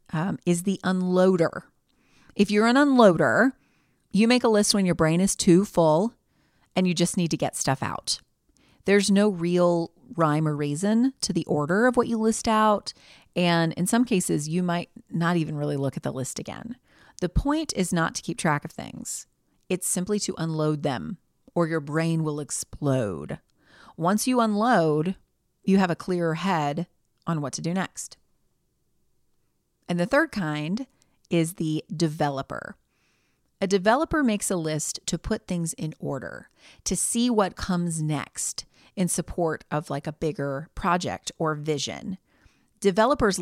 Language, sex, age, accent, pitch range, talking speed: English, female, 30-49, American, 155-210 Hz, 165 wpm